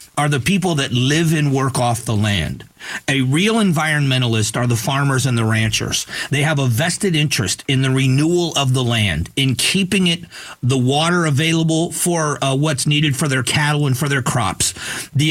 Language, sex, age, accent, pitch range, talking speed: English, male, 40-59, American, 125-155 Hz, 190 wpm